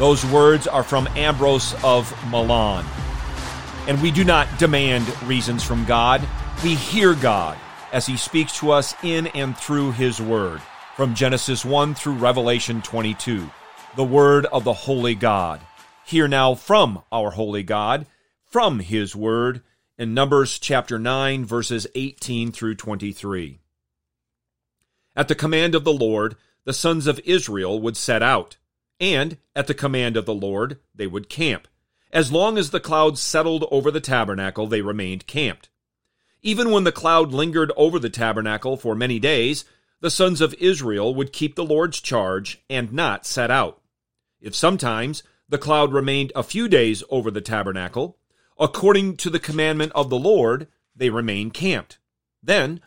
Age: 40-59